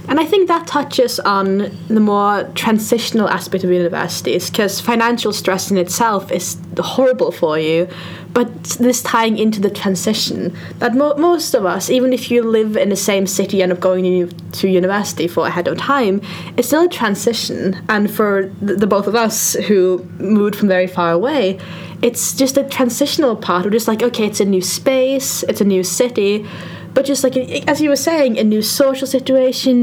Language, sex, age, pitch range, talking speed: English, female, 10-29, 190-250 Hz, 190 wpm